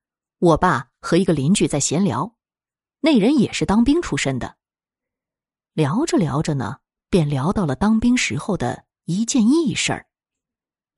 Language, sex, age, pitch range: Chinese, female, 20-39, 150-220 Hz